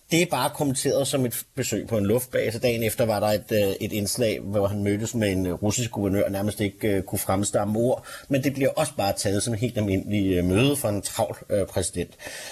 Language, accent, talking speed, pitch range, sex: Danish, native, 220 wpm, 105-140 Hz, male